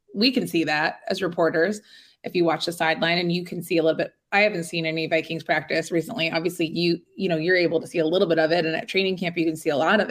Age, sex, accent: 20-39, female, American